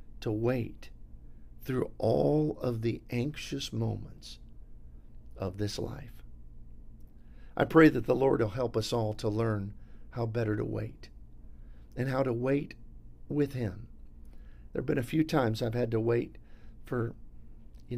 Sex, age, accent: male, 50-69, American